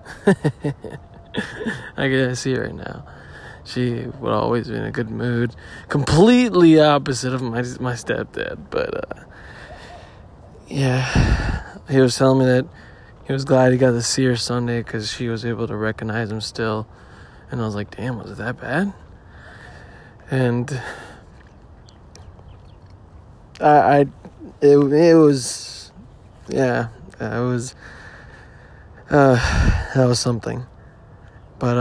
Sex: male